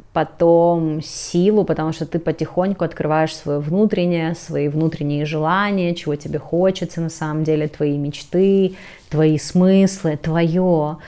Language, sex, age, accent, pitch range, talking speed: Russian, female, 30-49, native, 155-185 Hz, 125 wpm